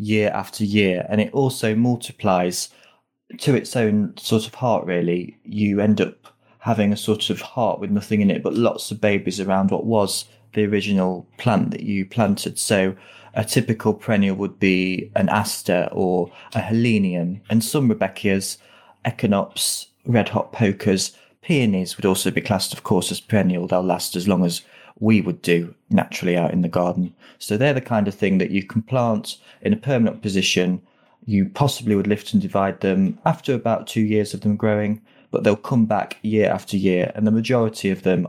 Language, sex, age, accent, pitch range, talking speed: English, male, 30-49, British, 95-110 Hz, 185 wpm